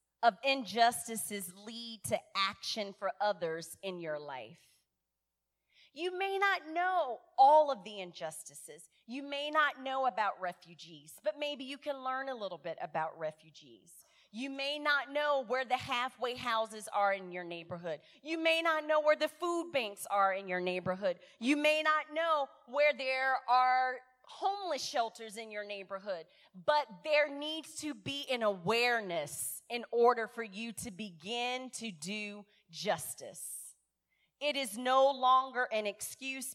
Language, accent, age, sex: English, American, 30-49, female